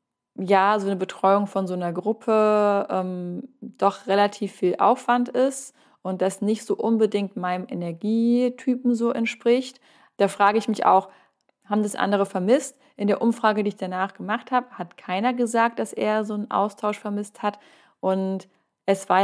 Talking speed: 165 wpm